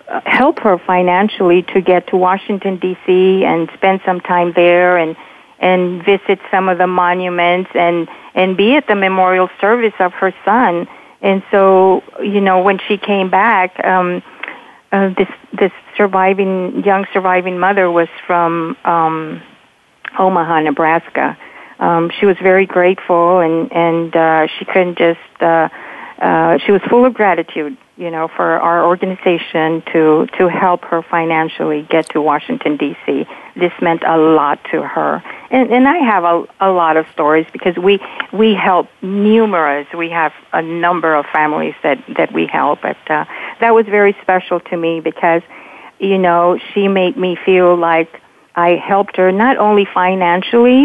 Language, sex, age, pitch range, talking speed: English, female, 50-69, 170-195 Hz, 160 wpm